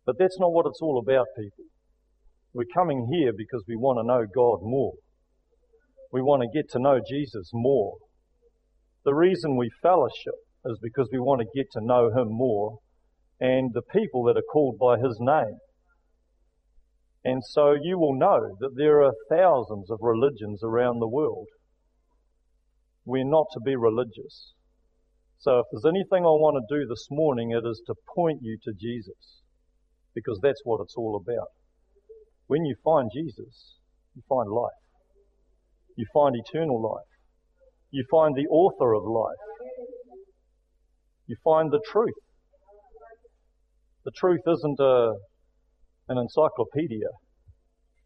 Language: English